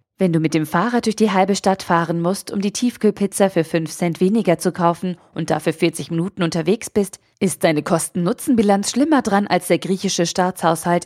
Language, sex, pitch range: German, female, 170-195 Hz